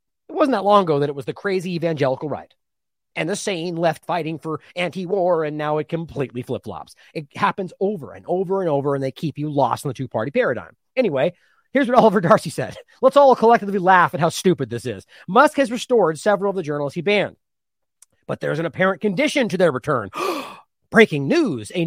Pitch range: 150-230 Hz